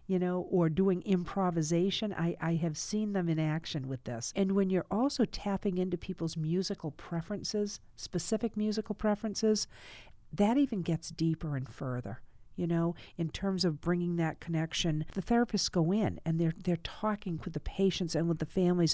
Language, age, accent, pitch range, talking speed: English, 50-69, American, 160-195 Hz, 175 wpm